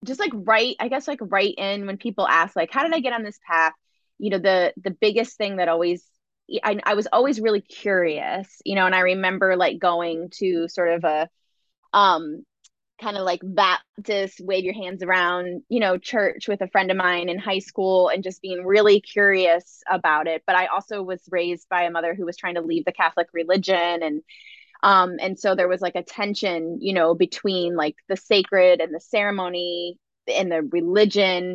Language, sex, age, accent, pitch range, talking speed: English, female, 20-39, American, 175-200 Hz, 205 wpm